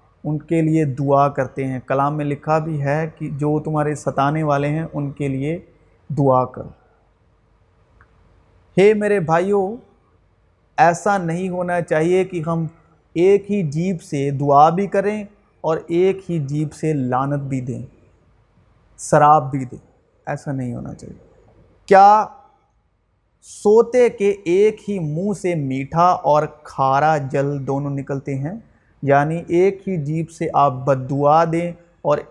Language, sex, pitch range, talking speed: Urdu, male, 135-180 Hz, 140 wpm